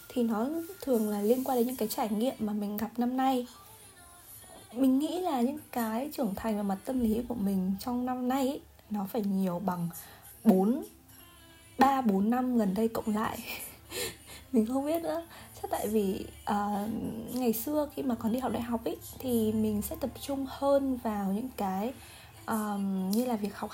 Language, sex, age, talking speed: Vietnamese, female, 20-39, 190 wpm